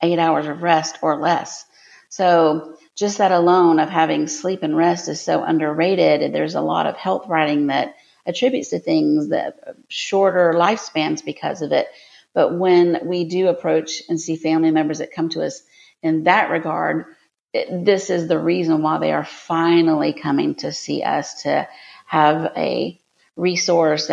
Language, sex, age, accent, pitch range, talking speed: English, female, 50-69, American, 160-180 Hz, 165 wpm